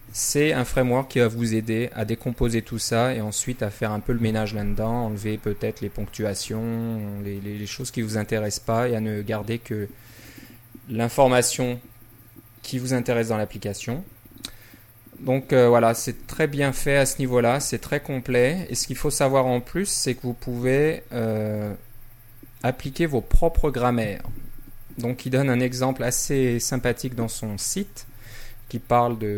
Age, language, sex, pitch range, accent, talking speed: 20-39, French, male, 110-125 Hz, French, 175 wpm